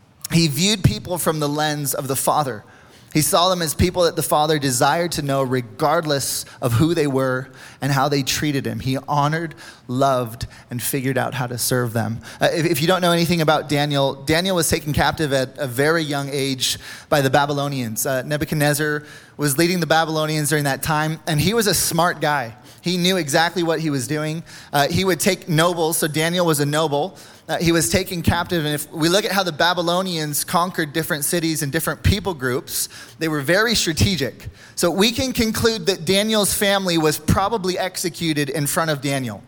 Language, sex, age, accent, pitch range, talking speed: English, male, 20-39, American, 140-170 Hz, 200 wpm